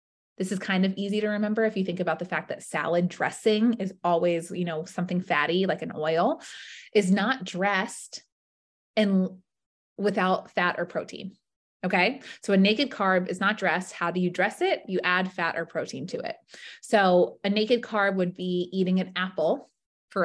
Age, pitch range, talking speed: 20-39, 180-210 Hz, 185 wpm